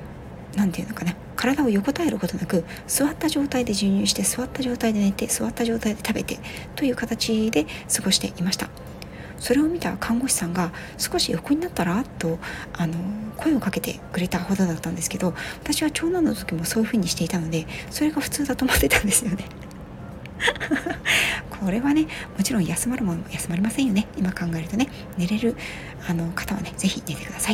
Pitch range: 180-250 Hz